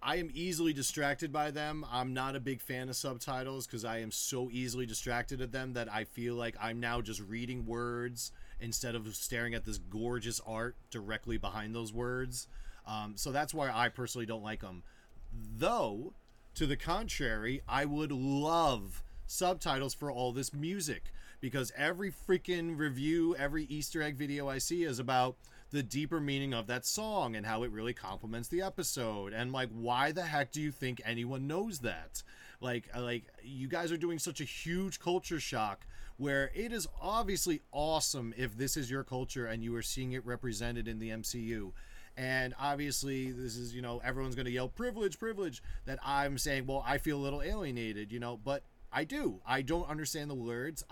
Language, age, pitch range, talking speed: English, 30-49, 115-150 Hz, 185 wpm